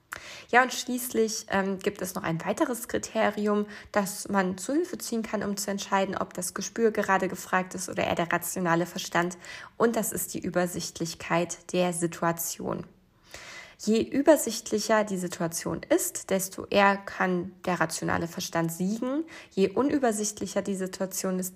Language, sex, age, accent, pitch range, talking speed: German, female, 20-39, German, 180-215 Hz, 150 wpm